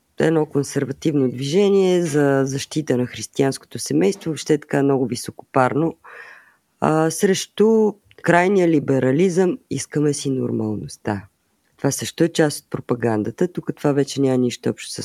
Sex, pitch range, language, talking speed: female, 125-155 Hz, Bulgarian, 135 wpm